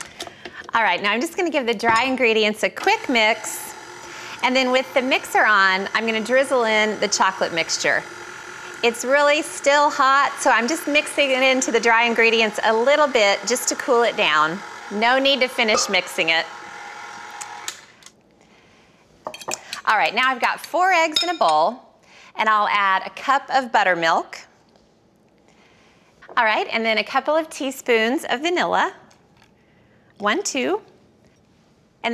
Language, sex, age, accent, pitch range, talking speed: English, female, 30-49, American, 205-275 Hz, 155 wpm